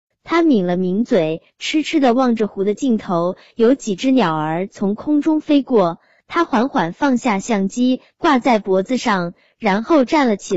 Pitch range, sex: 190-270 Hz, male